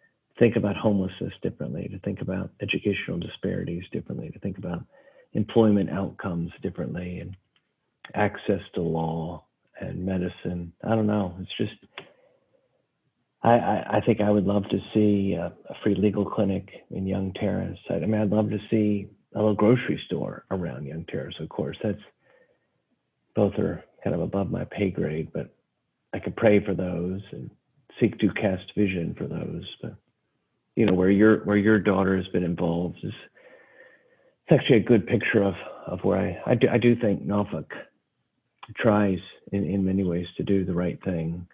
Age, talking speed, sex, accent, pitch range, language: 50-69, 170 wpm, male, American, 90-105 Hz, English